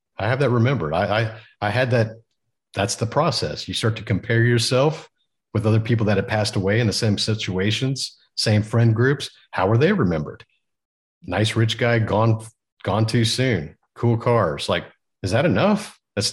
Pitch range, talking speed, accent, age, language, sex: 100-120 Hz, 180 wpm, American, 50-69, English, male